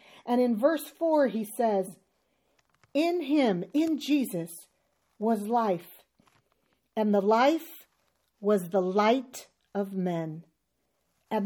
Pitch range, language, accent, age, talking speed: 190-260 Hz, English, American, 50-69, 110 wpm